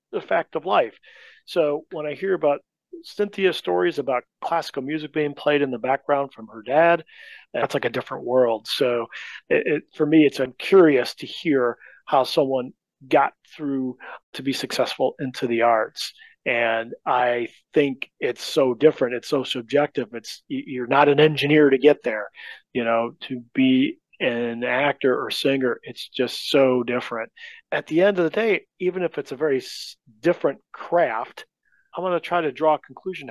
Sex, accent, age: male, American, 40-59